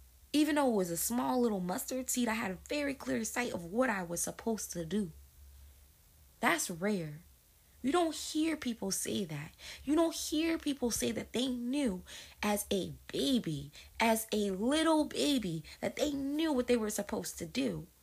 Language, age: English, 20-39